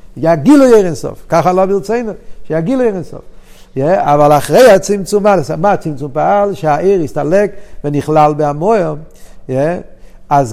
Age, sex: 50-69, male